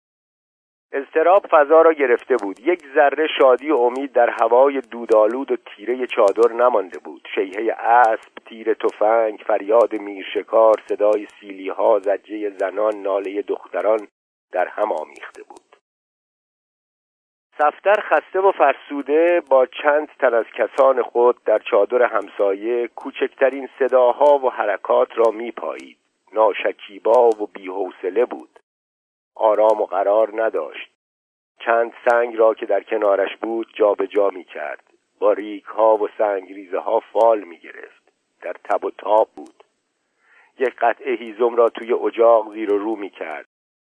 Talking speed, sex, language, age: 130 wpm, male, Persian, 50-69